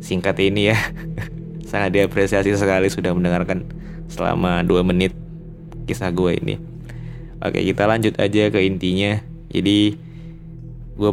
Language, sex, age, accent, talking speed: Indonesian, male, 20-39, native, 120 wpm